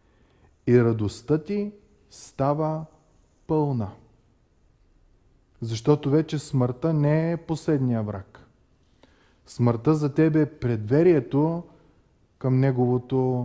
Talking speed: 85 wpm